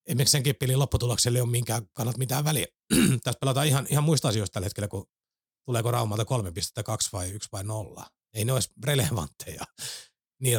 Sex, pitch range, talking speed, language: male, 105-130 Hz, 180 wpm, Finnish